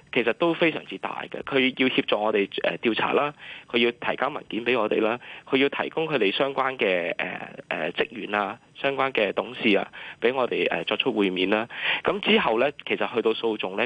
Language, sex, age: Chinese, male, 20-39